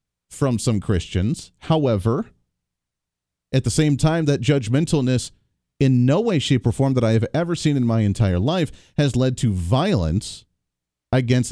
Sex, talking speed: male, 155 wpm